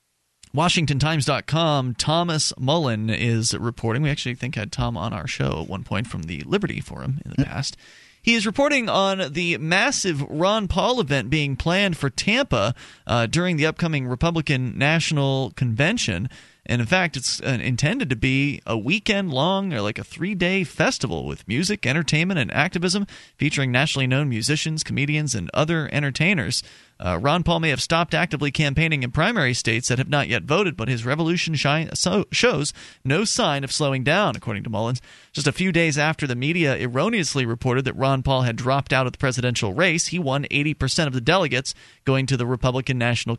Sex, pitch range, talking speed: male, 125-165 Hz, 180 wpm